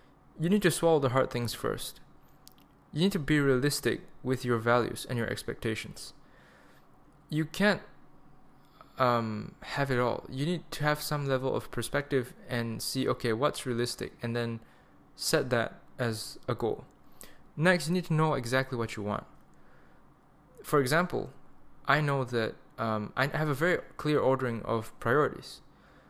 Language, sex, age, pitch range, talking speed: English, male, 20-39, 115-145 Hz, 155 wpm